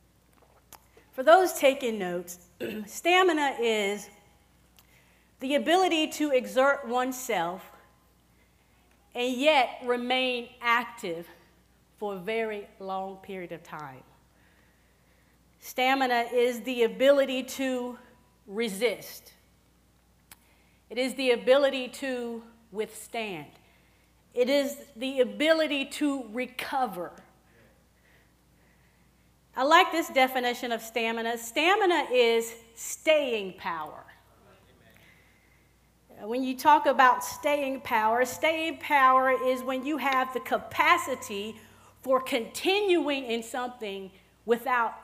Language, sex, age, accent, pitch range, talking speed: English, female, 40-59, American, 220-275 Hz, 90 wpm